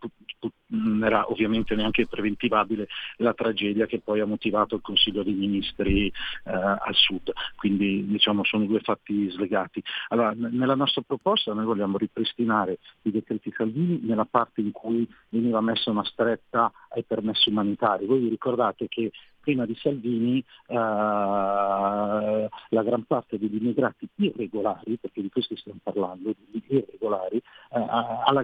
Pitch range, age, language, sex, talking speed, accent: 100-120 Hz, 40-59, Italian, male, 140 wpm, native